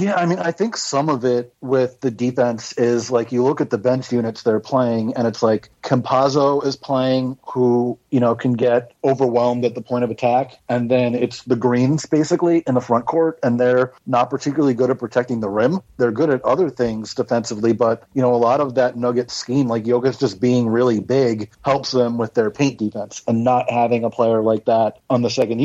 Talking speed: 220 wpm